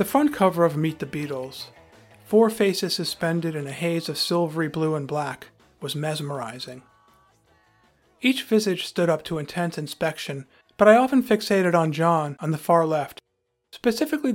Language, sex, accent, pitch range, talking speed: English, male, American, 150-190 Hz, 160 wpm